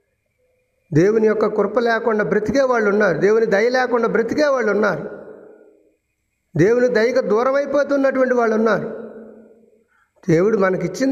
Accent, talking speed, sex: native, 110 wpm, male